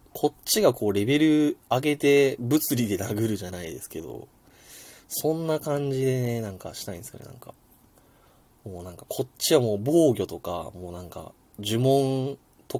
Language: Japanese